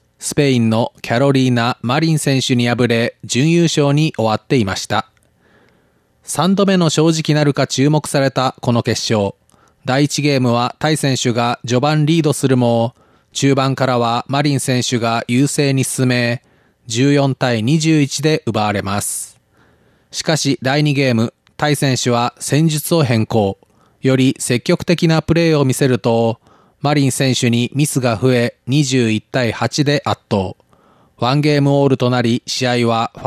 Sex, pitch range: male, 120-150 Hz